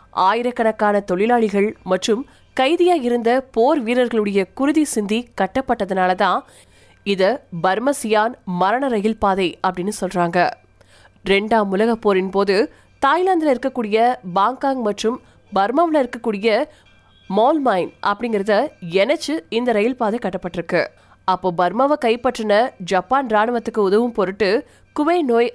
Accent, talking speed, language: native, 100 wpm, Tamil